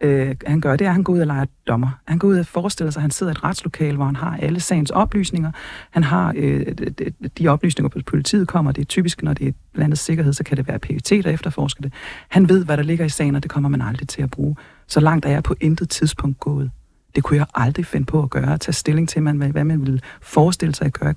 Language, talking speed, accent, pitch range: Danish, 270 wpm, native, 140-175 Hz